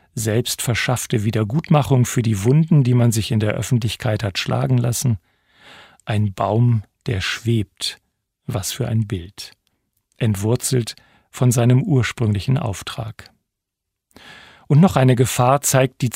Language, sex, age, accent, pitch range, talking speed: German, male, 40-59, German, 105-130 Hz, 125 wpm